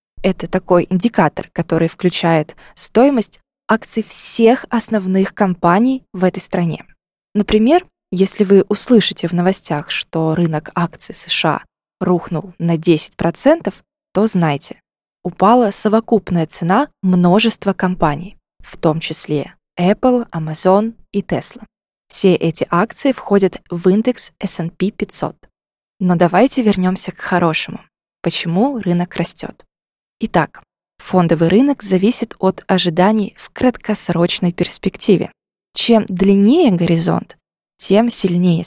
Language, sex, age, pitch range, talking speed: Russian, female, 20-39, 175-220 Hz, 110 wpm